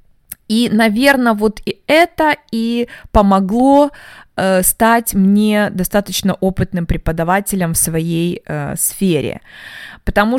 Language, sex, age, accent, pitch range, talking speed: Russian, female, 20-39, native, 180-245 Hz, 105 wpm